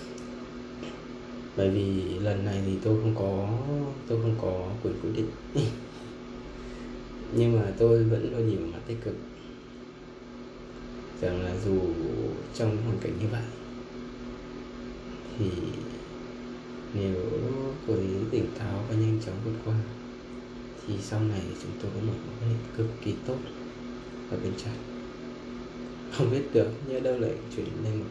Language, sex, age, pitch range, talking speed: Vietnamese, male, 20-39, 110-125 Hz, 145 wpm